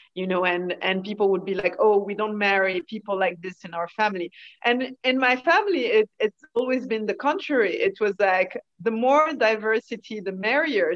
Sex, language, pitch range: female, English, 190-250 Hz